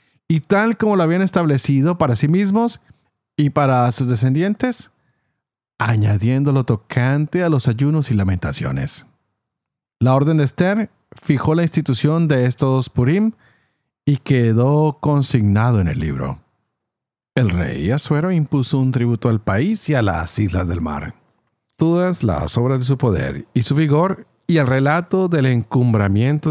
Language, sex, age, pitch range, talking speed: Spanish, male, 40-59, 110-155 Hz, 145 wpm